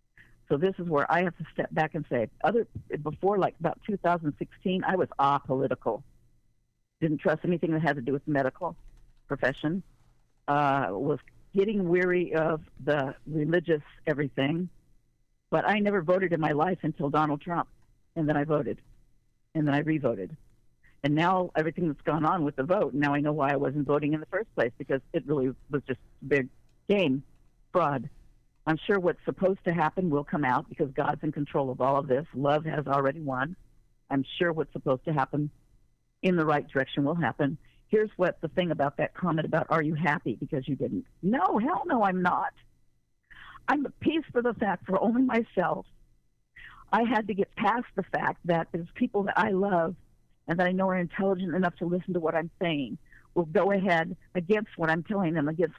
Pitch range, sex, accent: 145-180 Hz, female, American